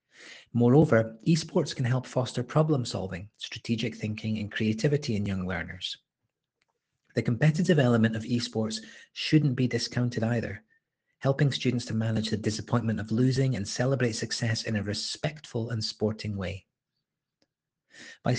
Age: 30-49